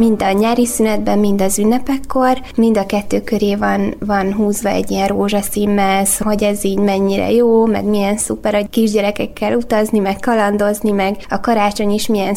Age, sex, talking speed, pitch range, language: 20-39, female, 170 wpm, 200-225 Hz, Hungarian